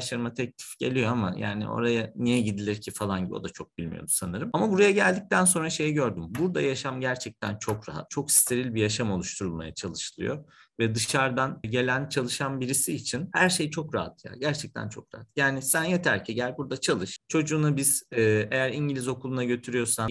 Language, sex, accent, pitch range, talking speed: Turkish, male, native, 110-145 Hz, 180 wpm